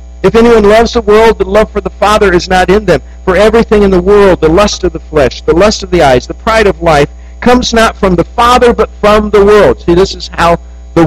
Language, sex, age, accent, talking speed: English, male, 50-69, American, 255 wpm